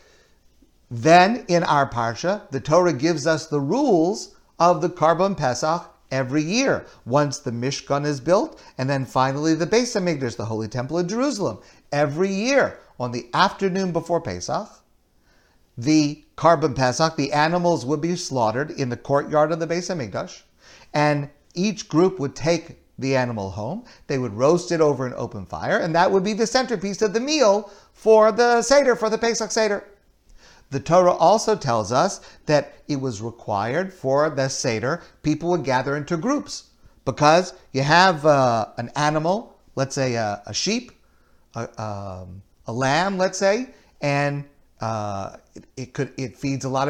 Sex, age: male, 50-69